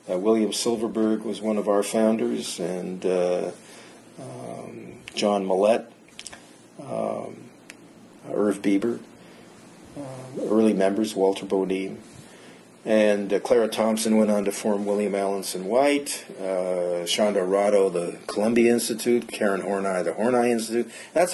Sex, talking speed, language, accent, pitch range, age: male, 125 wpm, English, American, 100-125 Hz, 40-59